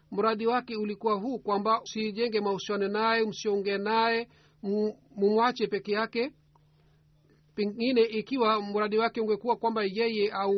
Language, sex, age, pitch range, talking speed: Swahili, male, 50-69, 200-225 Hz, 120 wpm